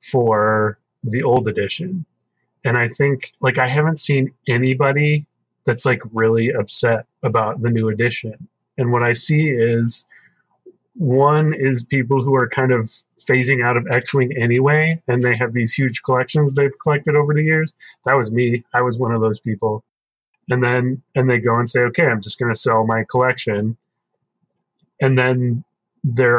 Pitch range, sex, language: 120-140 Hz, male, English